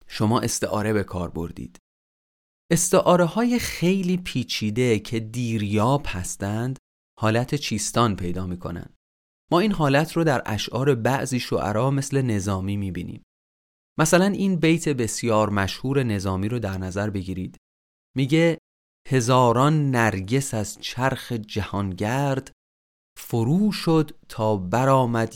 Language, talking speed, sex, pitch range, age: Persian, 115 wpm, male, 100-145 Hz, 30-49